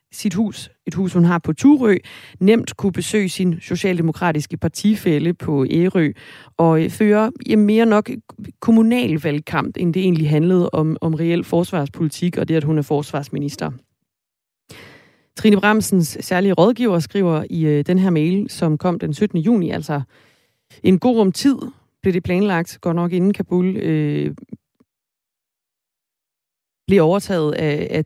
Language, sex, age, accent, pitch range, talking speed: Danish, female, 30-49, native, 155-210 Hz, 140 wpm